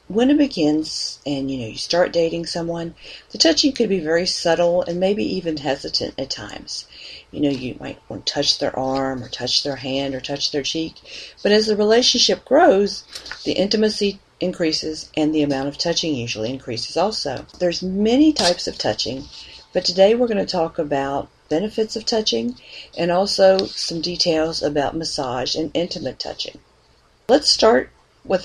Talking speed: 175 wpm